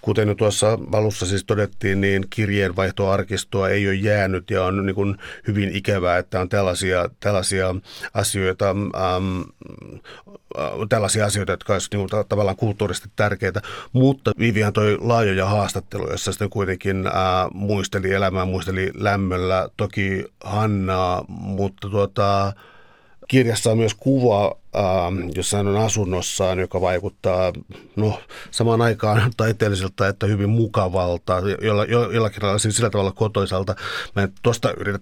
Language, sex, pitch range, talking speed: Finnish, male, 95-105 Hz, 125 wpm